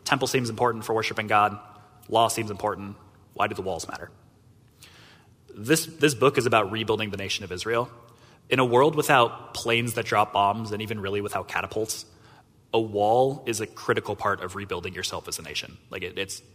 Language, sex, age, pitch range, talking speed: English, male, 30-49, 105-140 Hz, 185 wpm